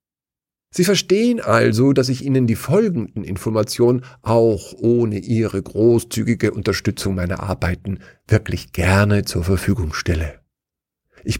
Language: German